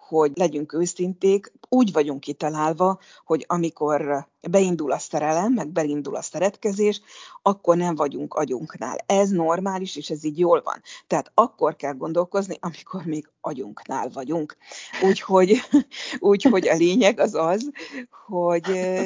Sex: female